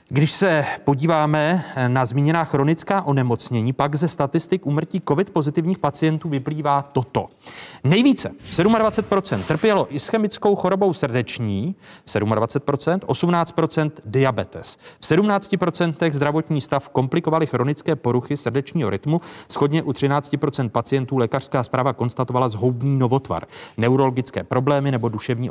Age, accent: 30-49, native